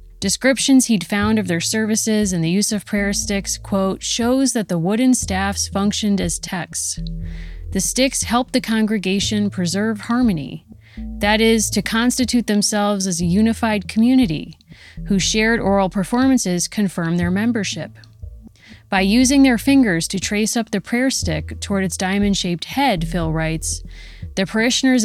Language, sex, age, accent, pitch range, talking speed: English, female, 30-49, American, 170-220 Hz, 150 wpm